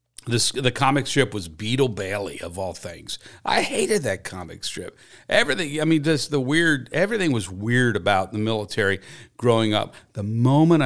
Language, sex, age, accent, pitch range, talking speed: English, male, 50-69, American, 105-130 Hz, 170 wpm